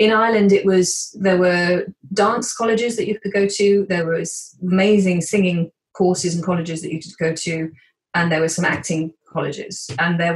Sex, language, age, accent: female, English, 30-49, British